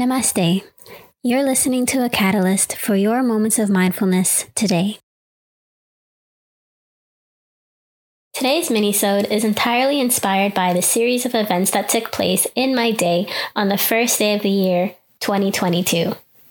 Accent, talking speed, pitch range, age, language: American, 130 wpm, 190-230 Hz, 20-39, English